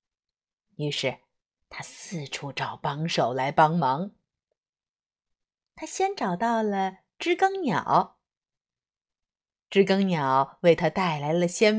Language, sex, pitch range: Chinese, female, 170-260 Hz